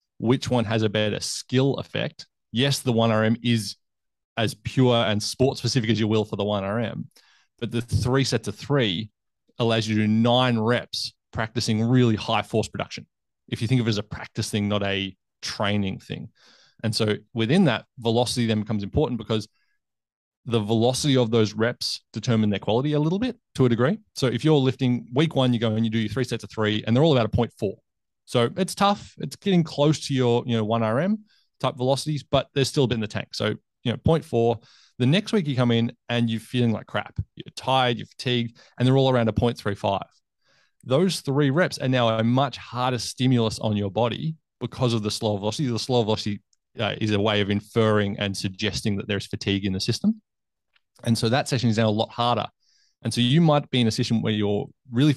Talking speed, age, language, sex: 215 wpm, 20-39, English, male